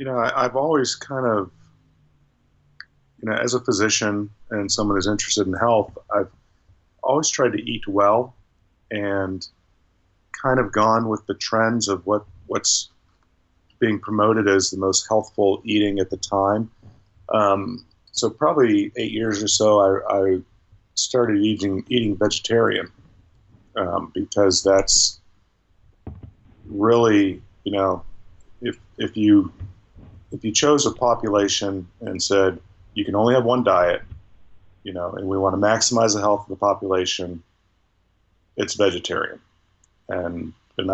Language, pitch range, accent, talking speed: English, 95-110 Hz, American, 140 wpm